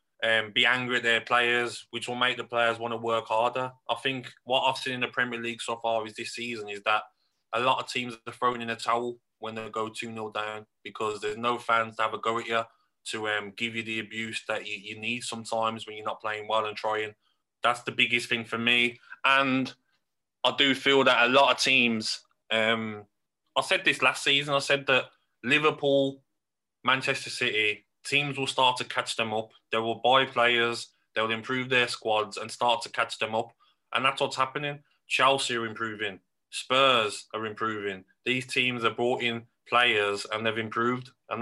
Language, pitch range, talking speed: English, 110-125 Hz, 205 wpm